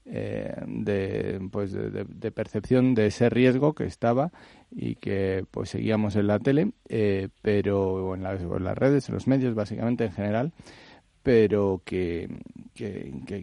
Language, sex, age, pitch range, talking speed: Spanish, male, 40-59, 100-120 Hz, 155 wpm